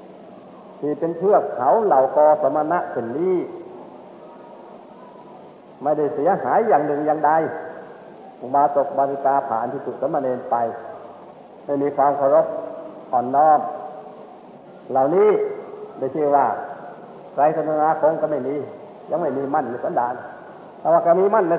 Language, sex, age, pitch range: Thai, male, 60-79, 135-170 Hz